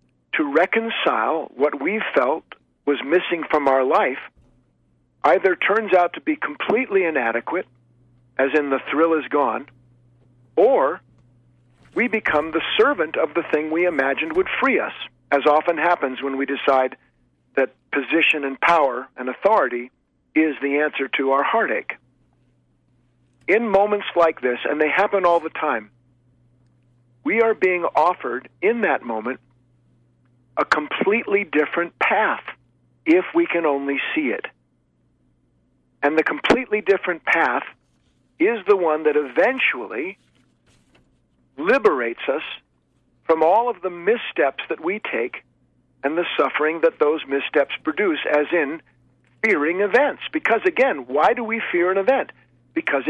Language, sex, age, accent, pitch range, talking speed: English, male, 50-69, American, 125-195 Hz, 135 wpm